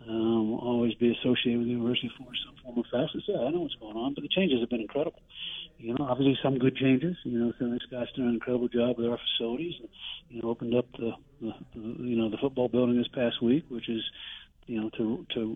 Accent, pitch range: American, 115-135 Hz